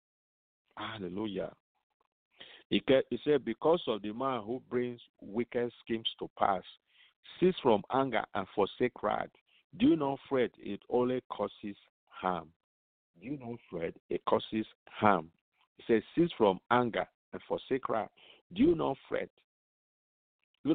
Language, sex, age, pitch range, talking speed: English, male, 50-69, 95-125 Hz, 135 wpm